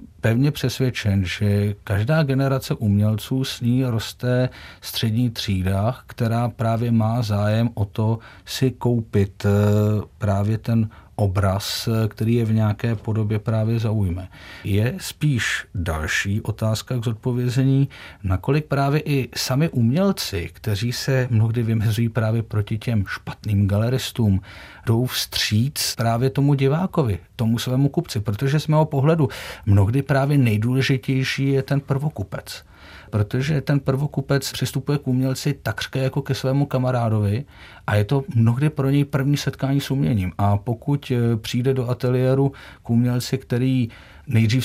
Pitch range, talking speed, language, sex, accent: 105-130 Hz, 130 wpm, Czech, male, native